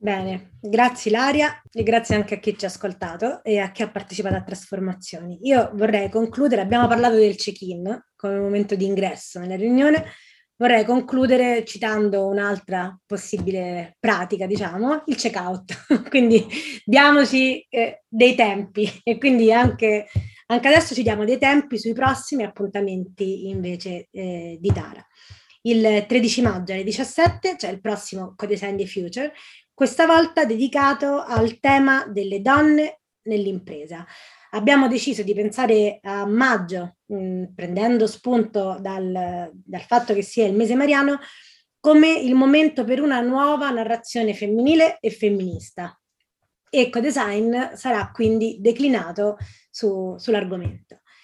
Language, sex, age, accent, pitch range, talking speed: Italian, female, 20-39, native, 195-255 Hz, 135 wpm